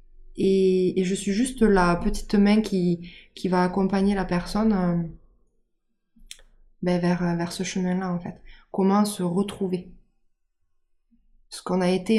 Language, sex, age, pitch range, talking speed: French, female, 20-39, 180-205 Hz, 140 wpm